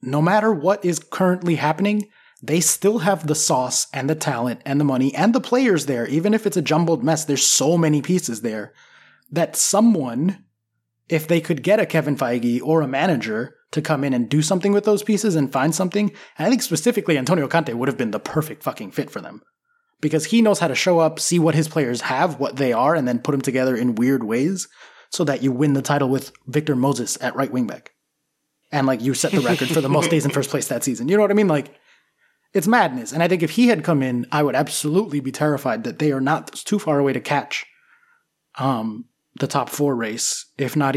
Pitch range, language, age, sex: 130-180 Hz, English, 20-39, male